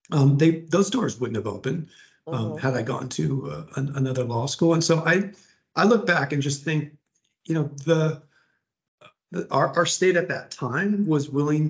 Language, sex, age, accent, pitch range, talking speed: English, male, 40-59, American, 125-155 Hz, 195 wpm